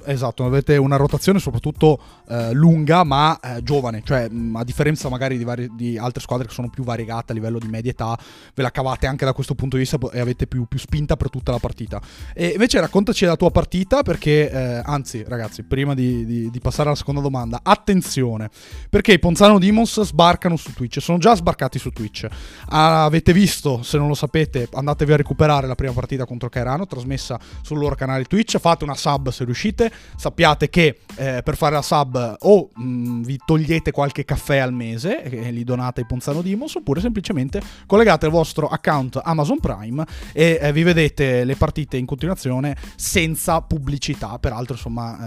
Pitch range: 125-155 Hz